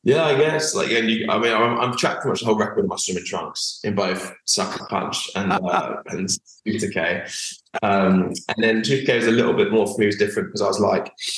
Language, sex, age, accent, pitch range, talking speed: English, male, 20-39, British, 95-110 Hz, 235 wpm